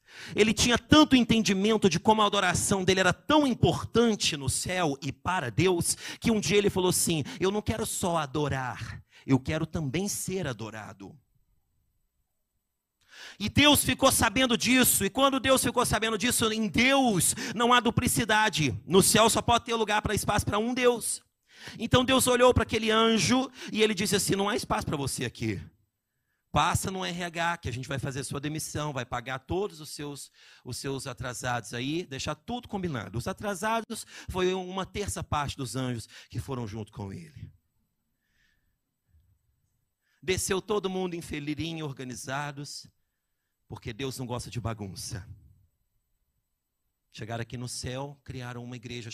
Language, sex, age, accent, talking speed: Portuguese, male, 40-59, Brazilian, 160 wpm